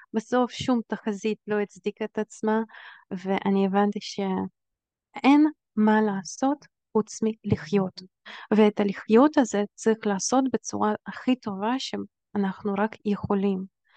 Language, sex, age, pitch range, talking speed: Hebrew, female, 20-39, 205-240 Hz, 105 wpm